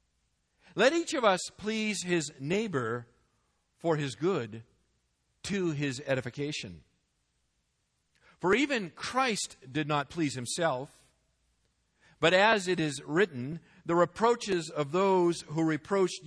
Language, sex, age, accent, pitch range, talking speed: English, male, 50-69, American, 130-190 Hz, 115 wpm